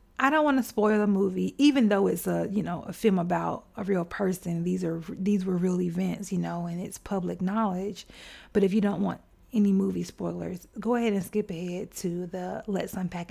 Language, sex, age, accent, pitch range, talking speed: English, female, 30-49, American, 185-220 Hz, 215 wpm